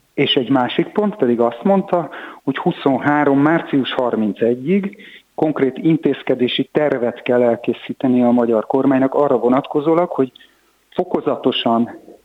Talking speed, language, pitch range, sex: 115 wpm, Hungarian, 125-155 Hz, male